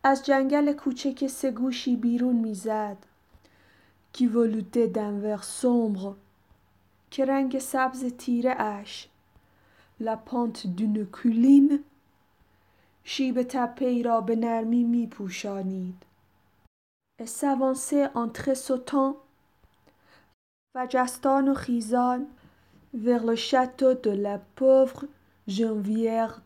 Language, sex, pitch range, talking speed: Persian, female, 205-260 Hz, 85 wpm